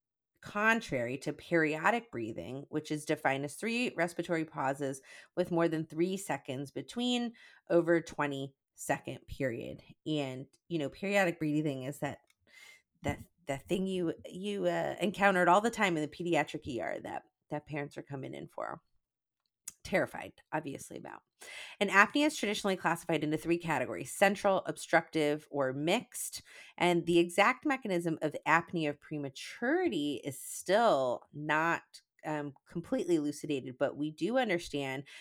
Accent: American